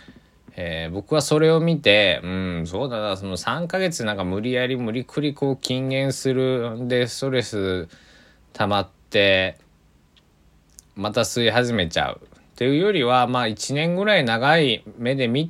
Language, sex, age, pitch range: Japanese, male, 20-39, 85-130 Hz